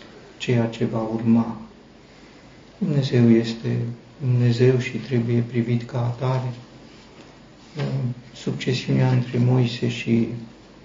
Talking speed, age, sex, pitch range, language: 90 wpm, 50-69, male, 115-125 Hz, Romanian